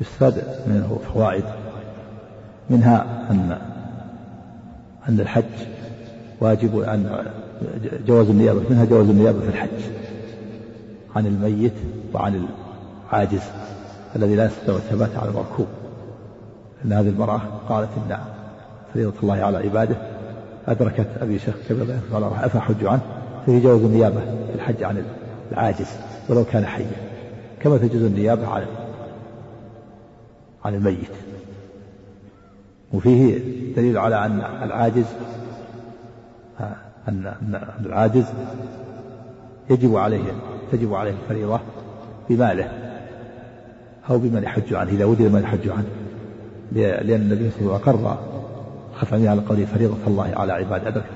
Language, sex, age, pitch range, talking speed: Arabic, male, 50-69, 105-120 Hz, 110 wpm